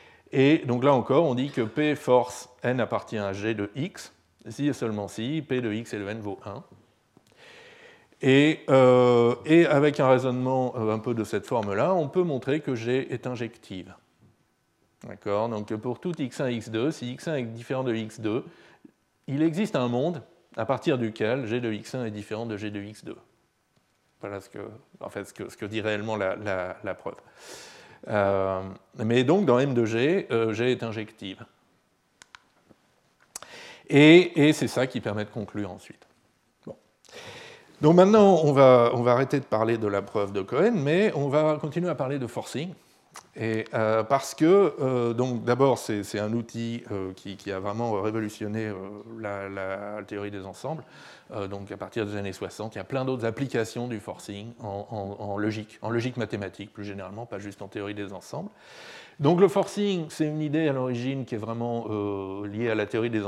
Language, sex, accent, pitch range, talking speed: French, male, French, 105-140 Hz, 185 wpm